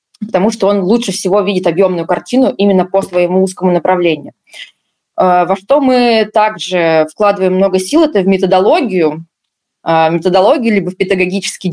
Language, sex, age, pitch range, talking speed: Russian, female, 20-39, 180-210 Hz, 140 wpm